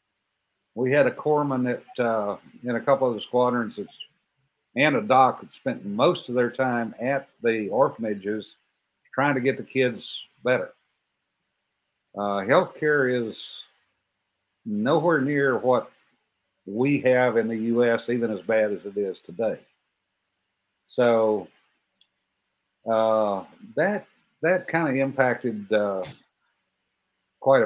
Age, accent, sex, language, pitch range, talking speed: 60-79, American, male, English, 110-130 Hz, 125 wpm